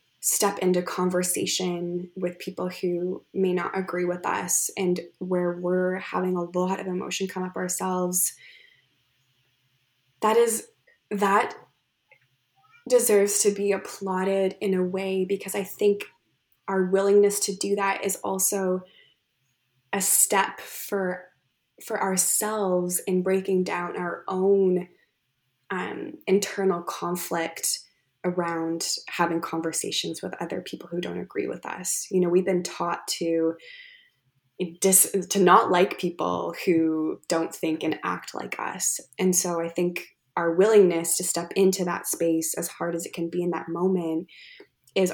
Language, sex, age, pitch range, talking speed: English, female, 20-39, 170-195 Hz, 140 wpm